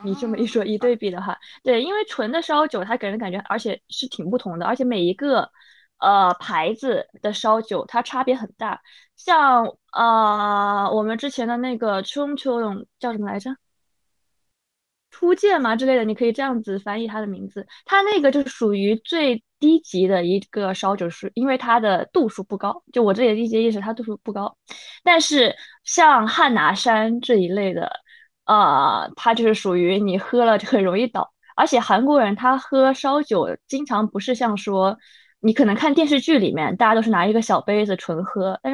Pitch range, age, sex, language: 200-265 Hz, 20-39, female, Chinese